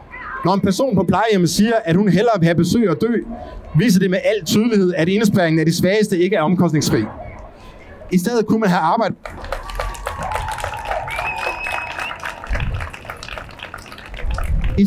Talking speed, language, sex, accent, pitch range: 115 wpm, Danish, male, native, 175-220 Hz